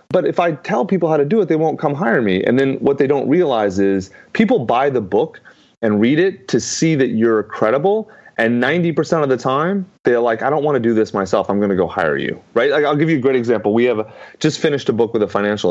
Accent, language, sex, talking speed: American, English, male, 265 wpm